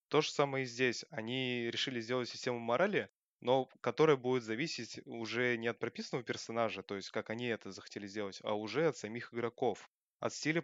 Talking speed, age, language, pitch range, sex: 185 wpm, 20-39, Russian, 110-130 Hz, male